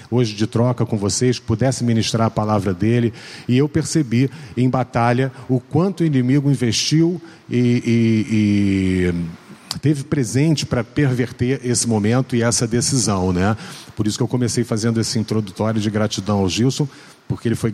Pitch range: 110-130 Hz